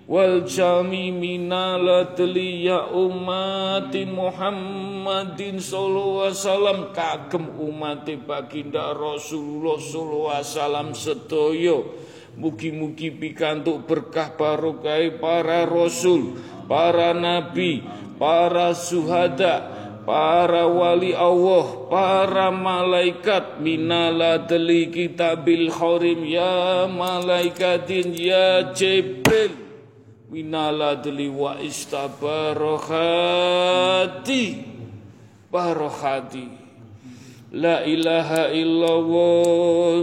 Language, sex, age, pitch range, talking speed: Indonesian, male, 40-59, 150-180 Hz, 75 wpm